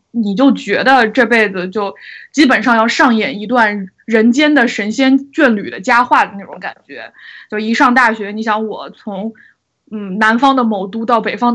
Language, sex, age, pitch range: Chinese, female, 20-39, 210-255 Hz